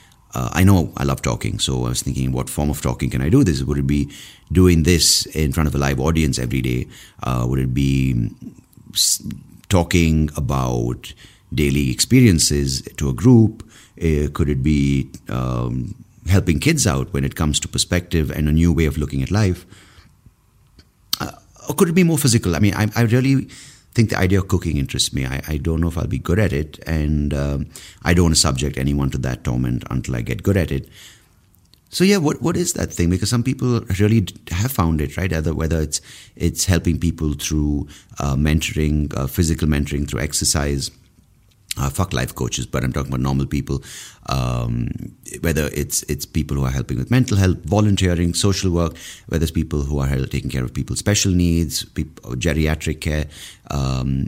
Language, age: English, 30-49